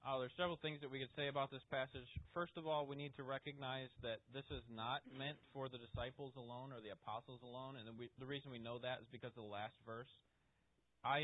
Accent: American